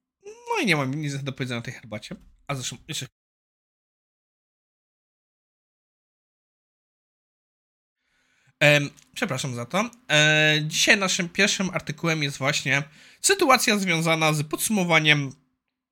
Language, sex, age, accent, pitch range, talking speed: Polish, male, 20-39, native, 140-190 Hz, 95 wpm